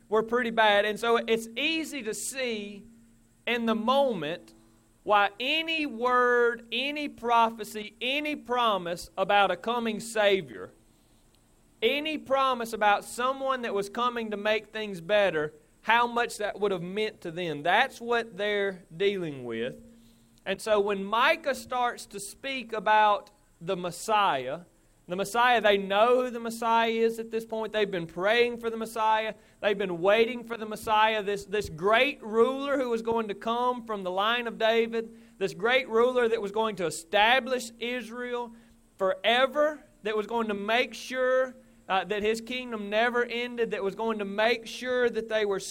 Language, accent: English, American